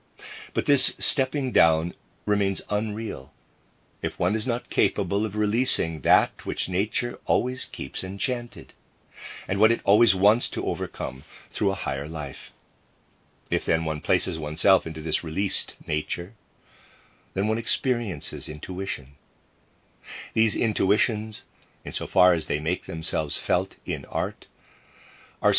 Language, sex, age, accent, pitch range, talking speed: English, male, 50-69, American, 80-110 Hz, 125 wpm